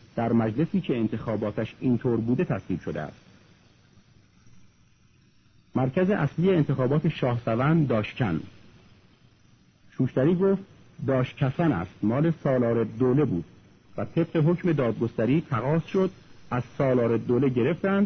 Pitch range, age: 115-160 Hz, 50-69